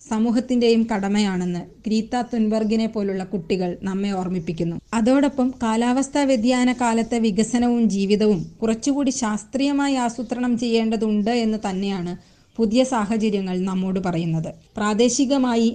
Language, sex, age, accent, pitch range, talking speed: Malayalam, female, 20-39, native, 195-235 Hz, 95 wpm